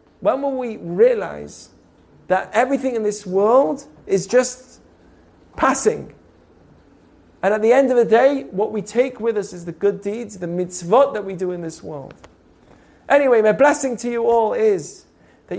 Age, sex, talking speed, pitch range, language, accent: 30-49, male, 170 wpm, 190-245 Hz, English, British